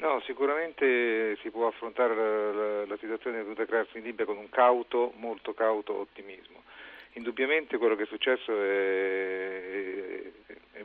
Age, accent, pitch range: 40-59, native, 105-115 Hz